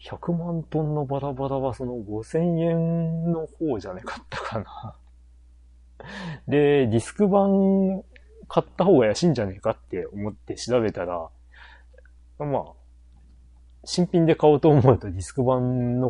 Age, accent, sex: 30-49, native, male